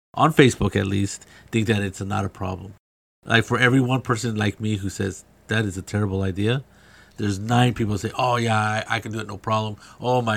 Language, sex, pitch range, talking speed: English, male, 100-125 Hz, 230 wpm